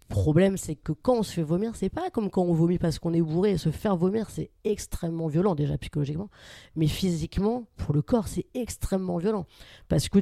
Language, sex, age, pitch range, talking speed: French, female, 30-49, 155-190 Hz, 225 wpm